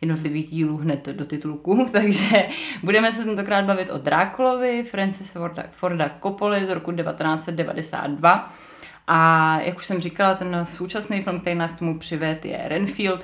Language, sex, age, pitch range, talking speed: Czech, female, 30-49, 150-185 Hz, 145 wpm